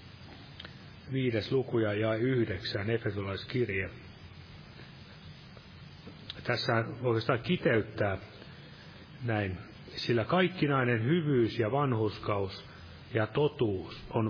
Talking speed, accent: 70 wpm, native